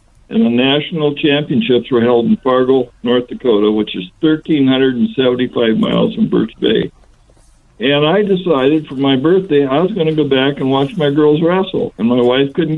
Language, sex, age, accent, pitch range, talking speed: English, male, 60-79, American, 120-150 Hz, 180 wpm